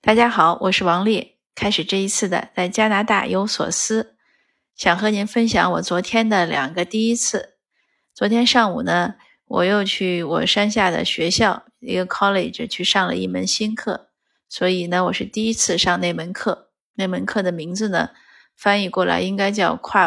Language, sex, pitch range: Chinese, female, 190-230 Hz